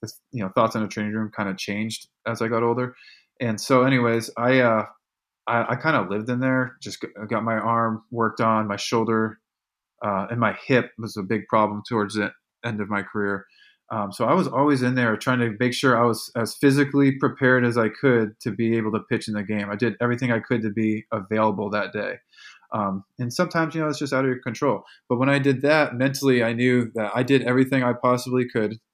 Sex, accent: male, American